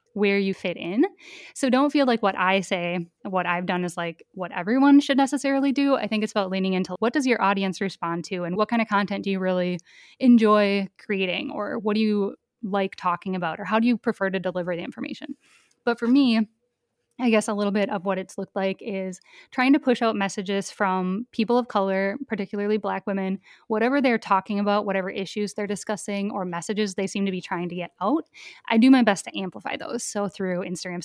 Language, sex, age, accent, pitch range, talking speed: English, female, 10-29, American, 190-235 Hz, 220 wpm